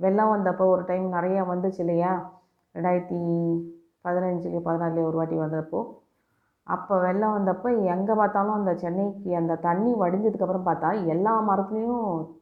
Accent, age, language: native, 30-49, Tamil